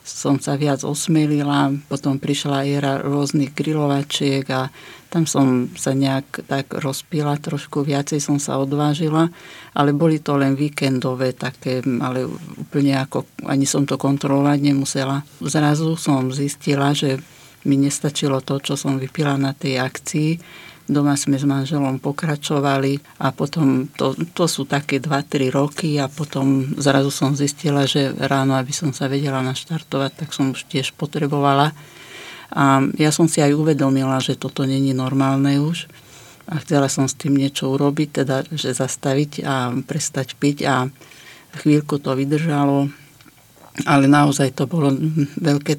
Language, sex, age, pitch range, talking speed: English, female, 60-79, 135-150 Hz, 145 wpm